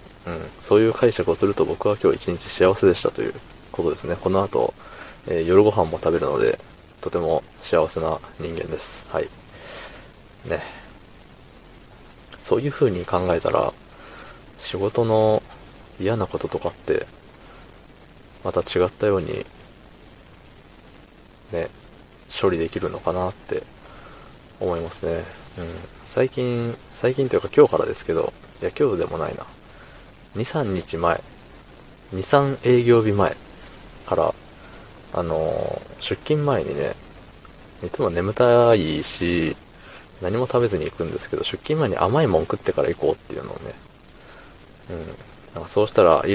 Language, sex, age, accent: Japanese, male, 20-39, native